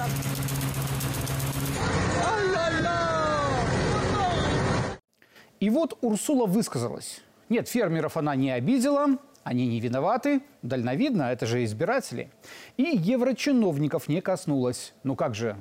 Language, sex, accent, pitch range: Russian, male, native, 155-245 Hz